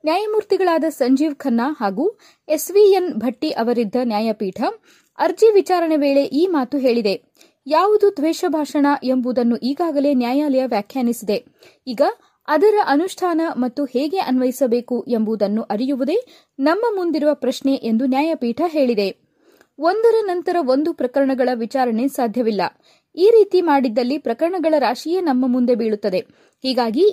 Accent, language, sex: native, Kannada, female